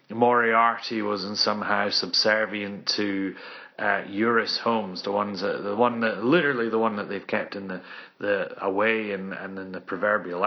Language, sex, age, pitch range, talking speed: English, male, 30-49, 95-115 Hz, 170 wpm